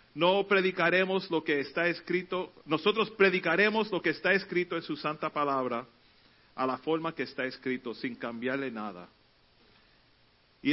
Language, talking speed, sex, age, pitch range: Spanish, 145 wpm, male, 40-59, 130-175 Hz